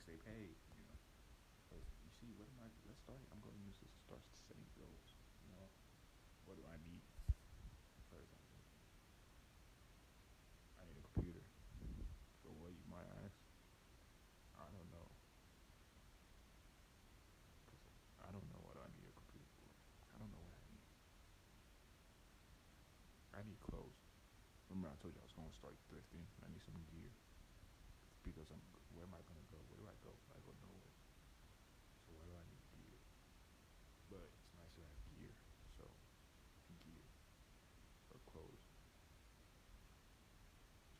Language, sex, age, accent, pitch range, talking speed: English, male, 30-49, American, 80-95 Hz, 160 wpm